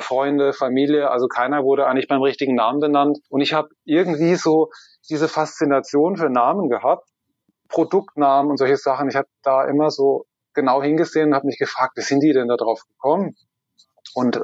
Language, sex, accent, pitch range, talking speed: German, male, German, 135-155 Hz, 180 wpm